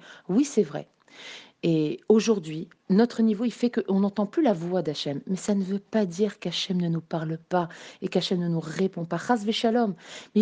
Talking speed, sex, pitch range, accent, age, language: 190 wpm, female, 185-230 Hz, French, 40-59, French